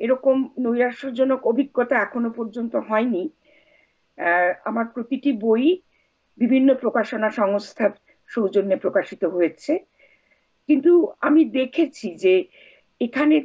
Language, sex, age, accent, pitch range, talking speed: Bengali, female, 50-69, native, 230-295 Hz, 85 wpm